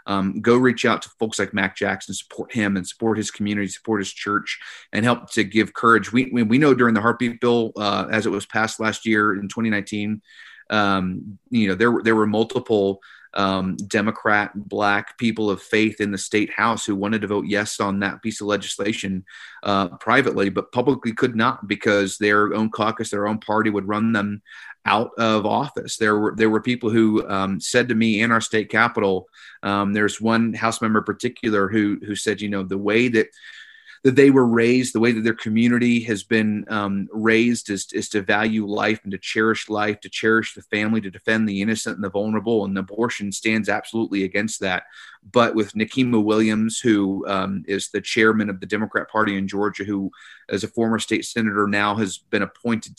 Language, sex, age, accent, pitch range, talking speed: English, male, 30-49, American, 100-115 Hz, 200 wpm